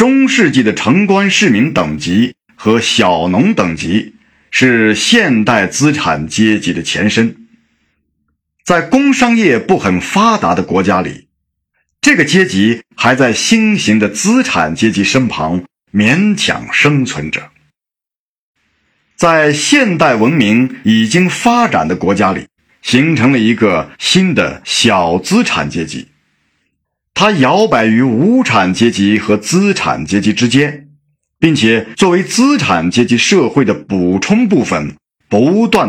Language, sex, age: Chinese, male, 50-69